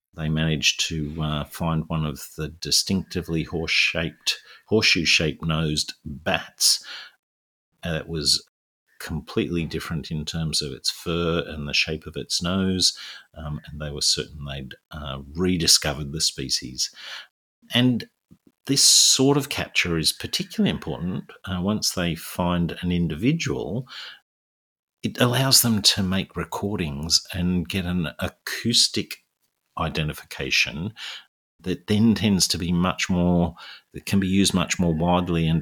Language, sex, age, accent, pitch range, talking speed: English, male, 50-69, Australian, 75-90 Hz, 130 wpm